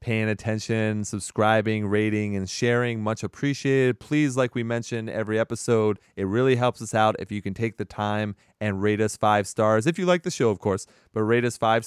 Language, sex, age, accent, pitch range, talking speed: English, male, 30-49, American, 95-115 Hz, 205 wpm